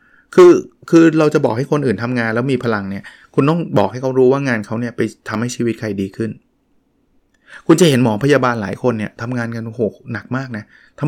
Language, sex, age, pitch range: Thai, male, 20-39, 110-140 Hz